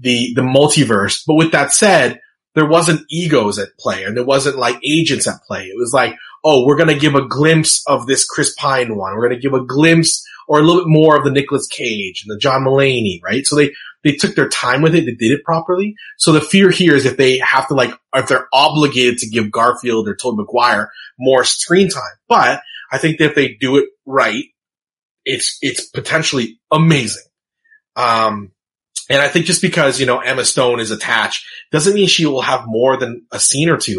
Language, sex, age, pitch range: English, male, 30-49, 125-155 Hz